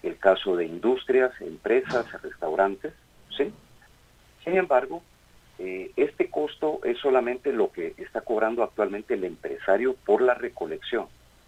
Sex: male